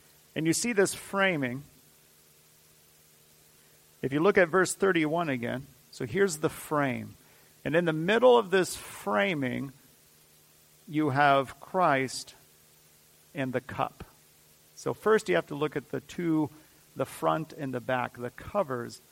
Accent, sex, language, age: American, male, English, 40-59